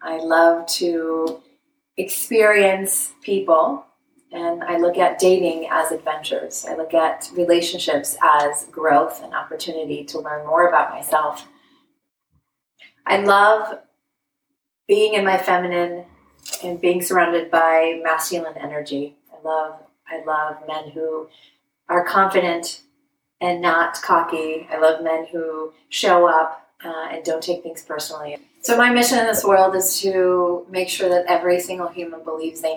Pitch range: 160-205 Hz